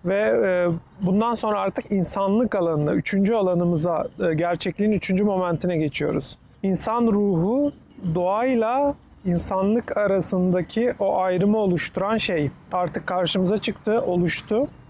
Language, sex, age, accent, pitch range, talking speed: Turkish, male, 40-59, native, 170-210 Hz, 100 wpm